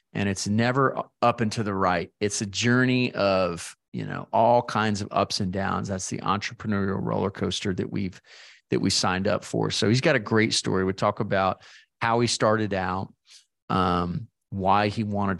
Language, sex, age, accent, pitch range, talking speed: English, male, 40-59, American, 95-115 Hz, 190 wpm